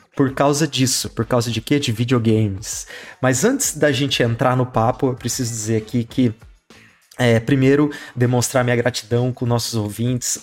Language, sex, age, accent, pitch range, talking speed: Portuguese, male, 30-49, Brazilian, 120-155 Hz, 165 wpm